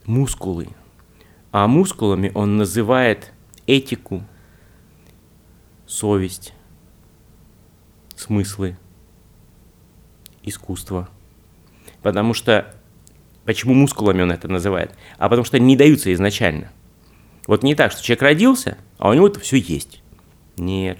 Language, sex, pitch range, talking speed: Russian, male, 90-110 Hz, 105 wpm